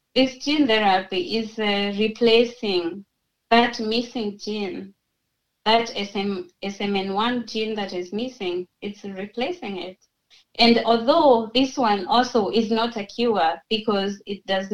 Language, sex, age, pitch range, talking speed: English, female, 20-39, 195-235 Hz, 120 wpm